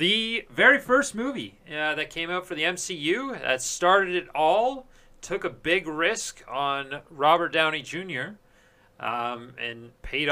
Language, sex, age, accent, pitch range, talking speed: English, male, 30-49, American, 120-160 Hz, 150 wpm